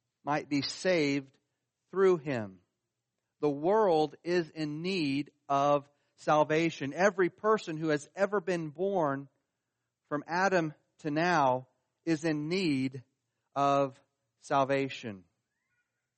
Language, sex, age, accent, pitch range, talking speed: English, male, 40-59, American, 120-155 Hz, 105 wpm